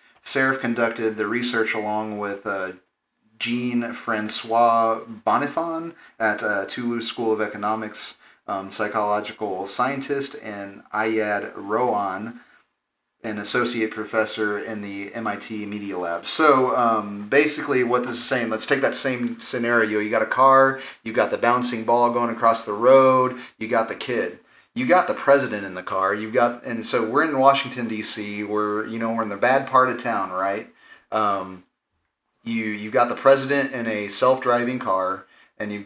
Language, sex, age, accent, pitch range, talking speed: English, male, 30-49, American, 105-125 Hz, 165 wpm